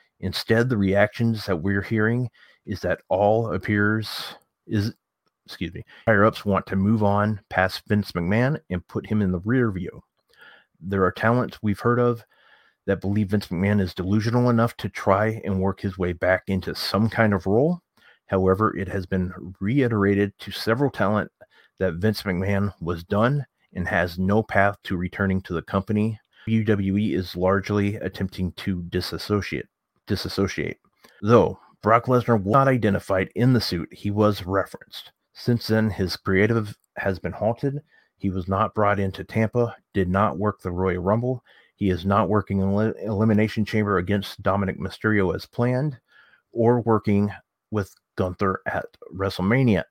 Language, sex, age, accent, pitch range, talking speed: English, male, 30-49, American, 95-110 Hz, 155 wpm